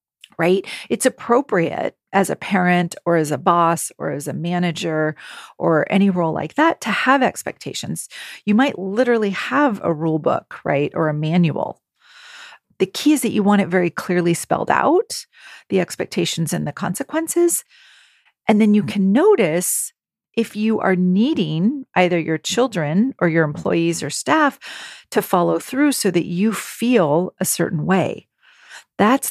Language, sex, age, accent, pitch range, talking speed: English, female, 40-59, American, 170-225 Hz, 160 wpm